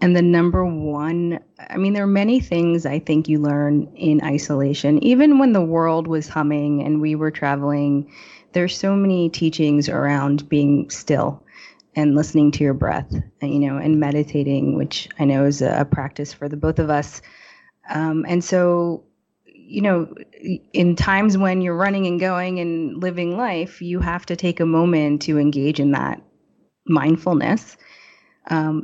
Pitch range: 145-180 Hz